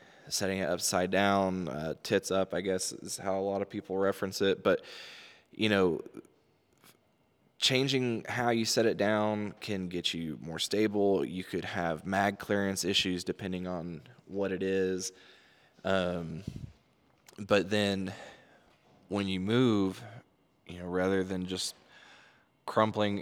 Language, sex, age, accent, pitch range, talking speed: English, male, 20-39, American, 90-100 Hz, 140 wpm